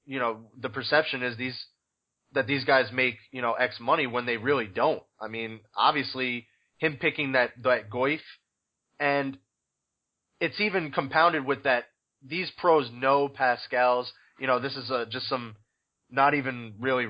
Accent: American